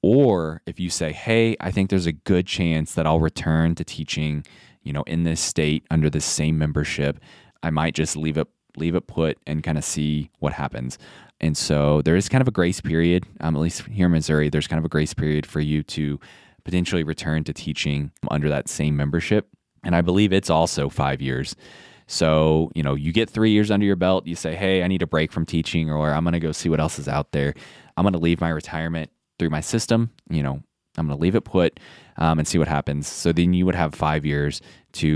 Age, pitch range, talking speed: 20-39, 75-90 Hz, 235 wpm